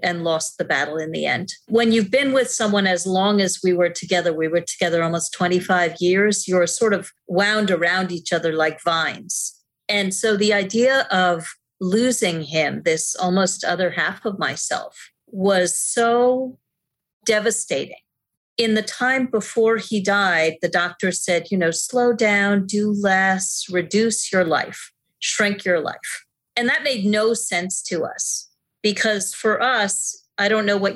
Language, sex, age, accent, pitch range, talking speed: English, female, 40-59, American, 175-225 Hz, 165 wpm